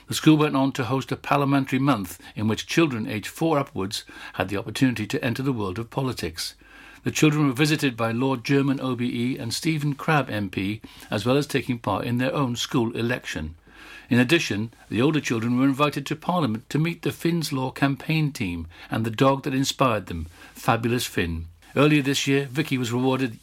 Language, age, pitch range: English, 60-79, 115-145 Hz